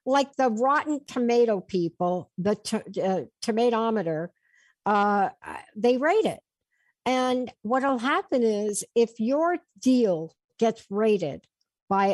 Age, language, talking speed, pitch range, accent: 60-79, English, 125 wpm, 180-255 Hz, American